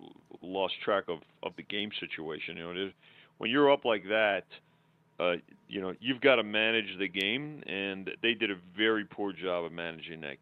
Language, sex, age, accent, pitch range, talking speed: English, male, 40-59, American, 90-115 Hz, 190 wpm